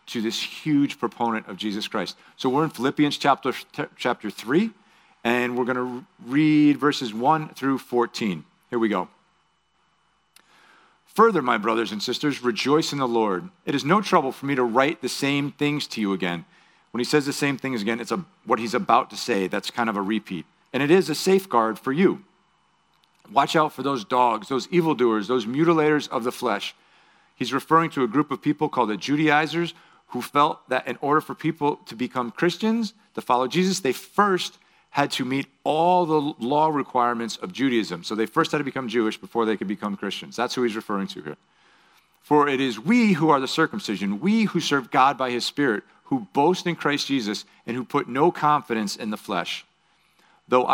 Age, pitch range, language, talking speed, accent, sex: 40-59, 120-155 Hz, English, 200 wpm, American, male